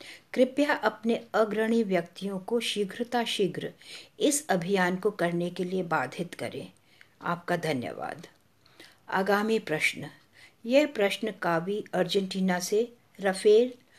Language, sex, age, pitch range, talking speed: English, female, 60-79, 185-250 Hz, 105 wpm